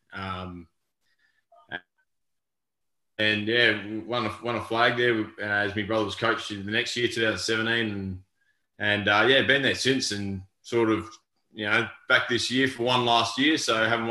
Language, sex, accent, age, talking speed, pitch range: English, male, Australian, 20-39, 180 wpm, 95-110 Hz